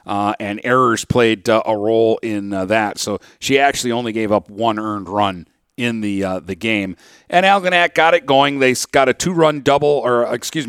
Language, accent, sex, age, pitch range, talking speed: English, American, male, 50-69, 110-140 Hz, 195 wpm